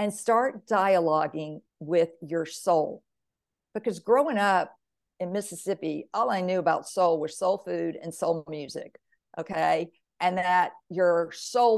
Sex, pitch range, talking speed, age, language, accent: female, 175-205 Hz, 140 wpm, 50-69, English, American